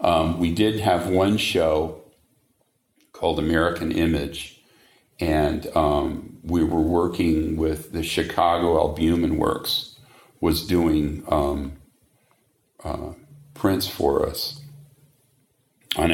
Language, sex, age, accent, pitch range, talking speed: English, male, 50-69, American, 75-95 Hz, 100 wpm